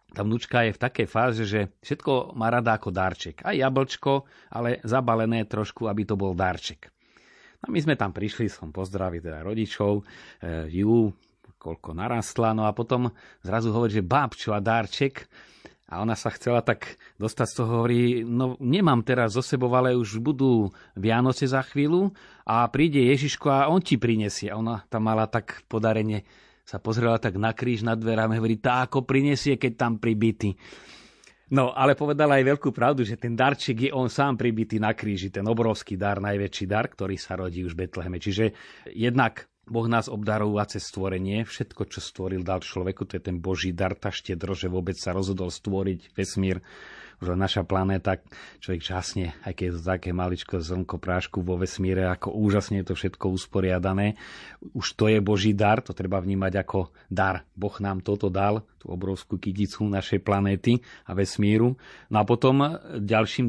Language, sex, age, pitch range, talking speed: Slovak, male, 30-49, 95-120 Hz, 175 wpm